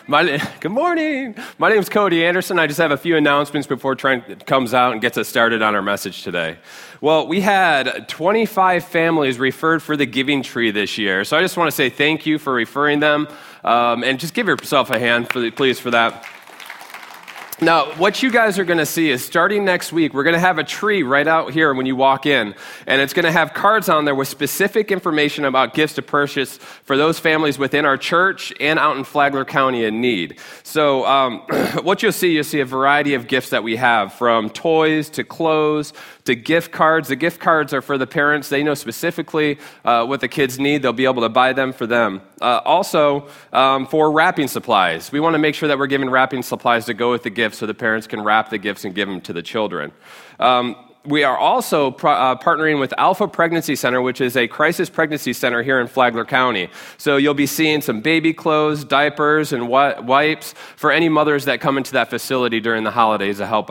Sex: male